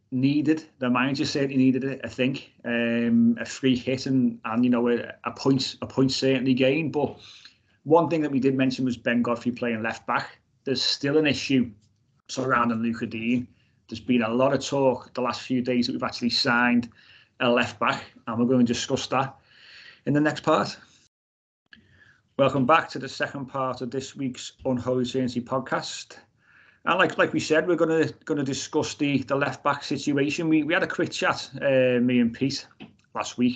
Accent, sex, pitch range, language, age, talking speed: British, male, 115-135 Hz, English, 30-49, 185 wpm